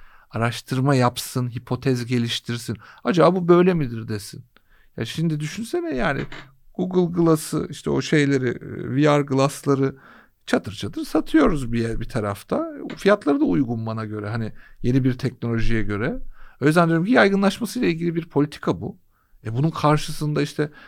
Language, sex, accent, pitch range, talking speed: Turkish, male, native, 115-160 Hz, 150 wpm